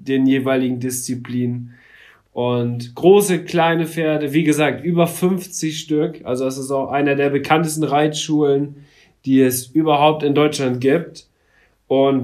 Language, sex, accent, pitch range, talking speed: German, male, German, 135-170 Hz, 130 wpm